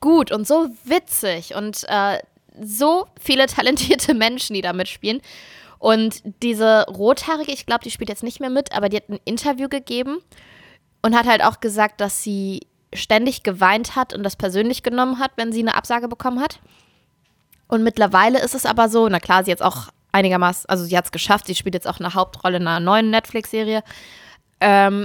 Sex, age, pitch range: female, 20-39, 195-245 Hz